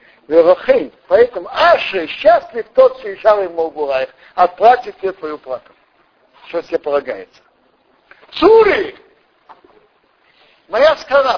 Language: Russian